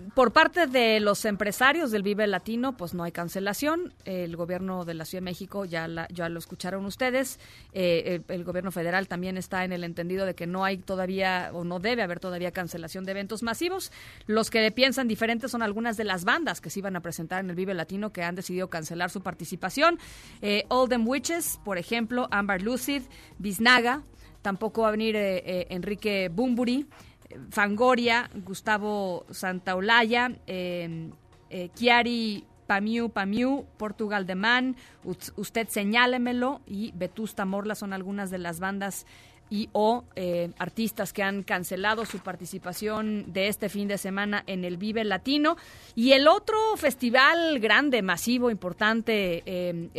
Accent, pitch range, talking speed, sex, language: Mexican, 185-235 Hz, 165 wpm, female, Spanish